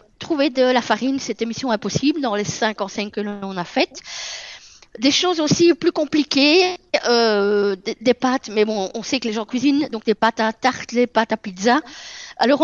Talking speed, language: 195 wpm, French